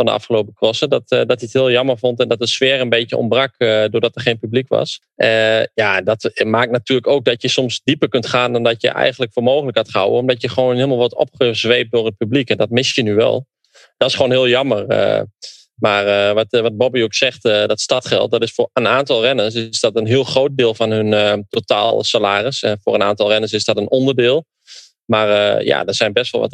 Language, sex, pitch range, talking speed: English, male, 110-130 Hz, 255 wpm